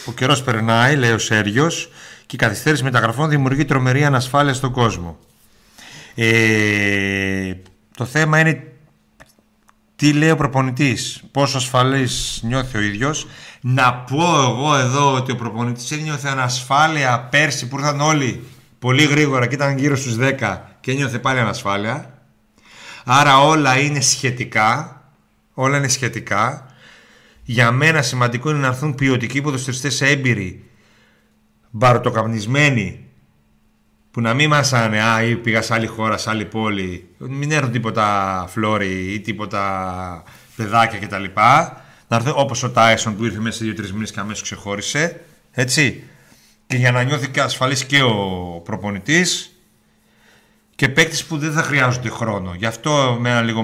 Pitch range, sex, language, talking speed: 105-140 Hz, male, Greek, 135 wpm